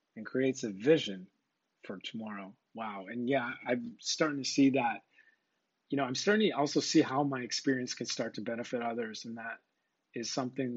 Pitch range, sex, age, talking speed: 115-160 Hz, male, 30-49, 185 wpm